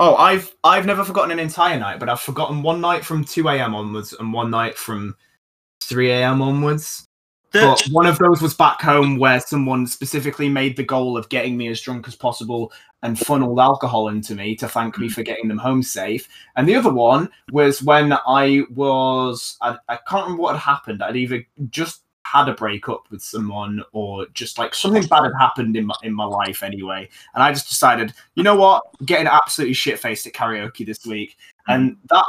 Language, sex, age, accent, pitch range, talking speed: English, male, 20-39, British, 120-165 Hz, 205 wpm